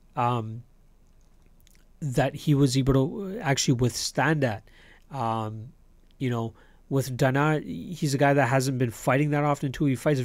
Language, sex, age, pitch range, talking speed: English, male, 30-49, 120-145 Hz, 150 wpm